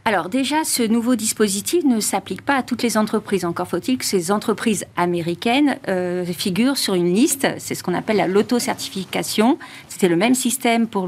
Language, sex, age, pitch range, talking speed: French, female, 50-69, 180-230 Hz, 180 wpm